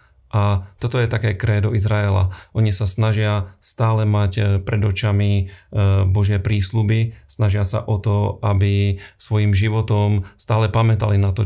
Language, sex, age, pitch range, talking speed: Slovak, male, 40-59, 100-105 Hz, 135 wpm